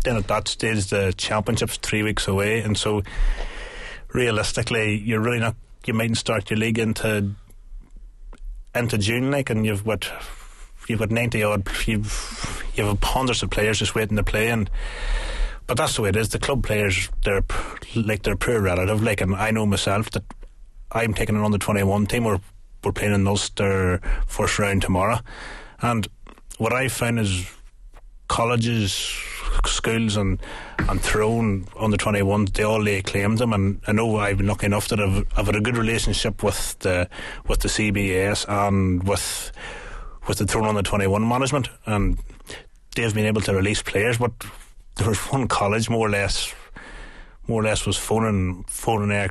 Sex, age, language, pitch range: male, 30-49, English, 100-110 Hz